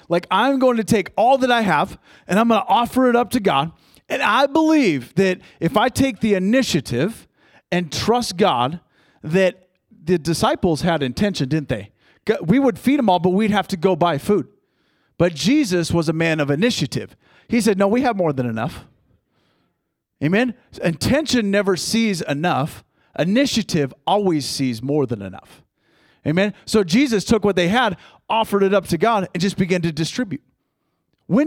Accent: American